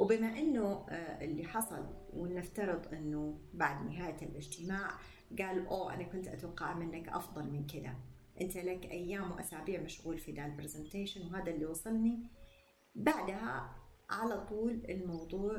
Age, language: 30-49, Arabic